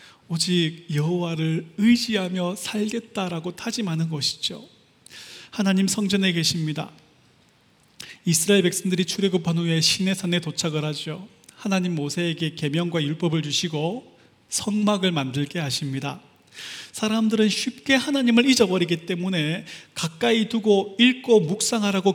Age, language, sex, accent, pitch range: 30-49, Korean, male, native, 165-230 Hz